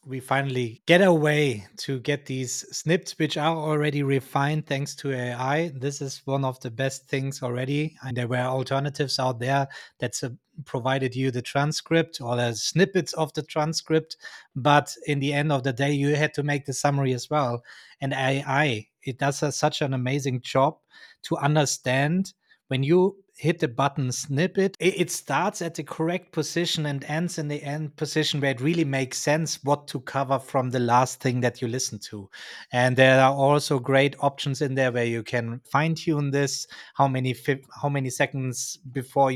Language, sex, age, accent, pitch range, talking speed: English, male, 30-49, German, 130-155 Hz, 185 wpm